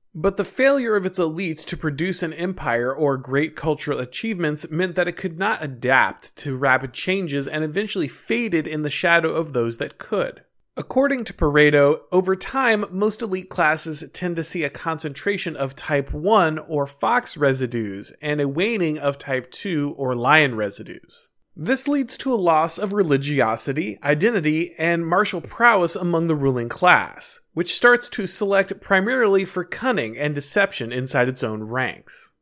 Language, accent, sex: English, American, male